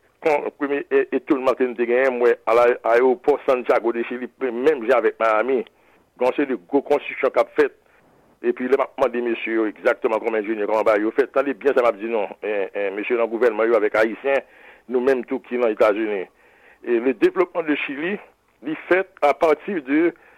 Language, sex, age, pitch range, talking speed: English, male, 60-79, 125-180 Hz, 170 wpm